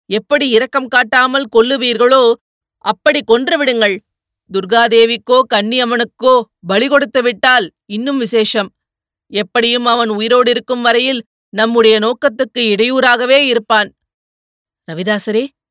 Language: Tamil